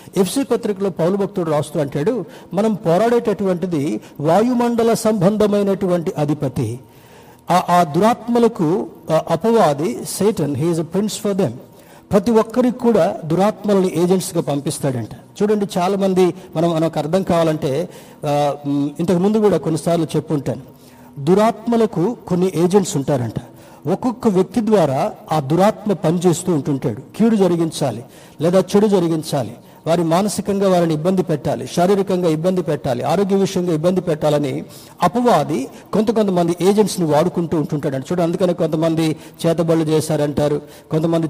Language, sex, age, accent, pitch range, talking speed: Telugu, male, 60-79, native, 155-195 Hz, 115 wpm